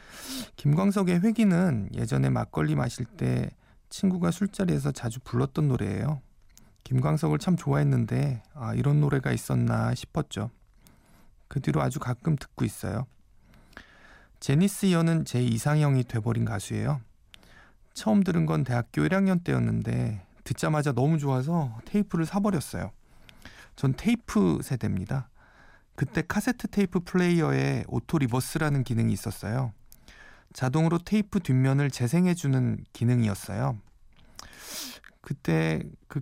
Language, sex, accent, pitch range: Korean, male, native, 115-165 Hz